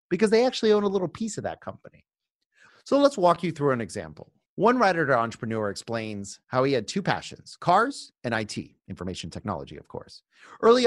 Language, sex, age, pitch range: English, male, 30-49, 110-175 Hz